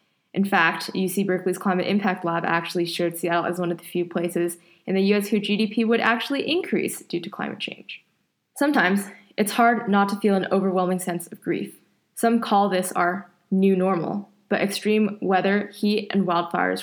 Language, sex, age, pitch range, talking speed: English, female, 20-39, 175-205 Hz, 180 wpm